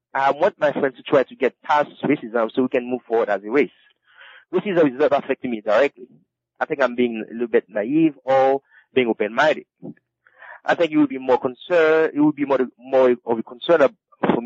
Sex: male